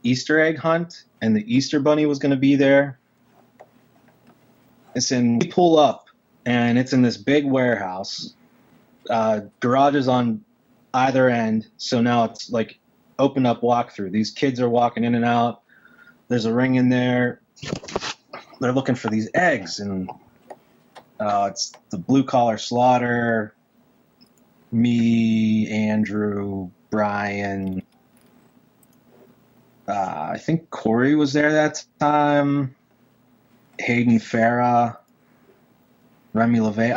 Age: 20-39